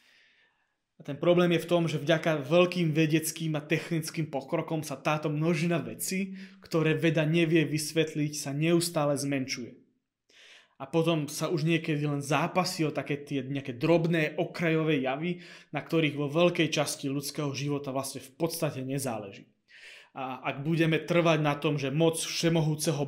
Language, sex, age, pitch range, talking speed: Slovak, male, 20-39, 145-170 Hz, 150 wpm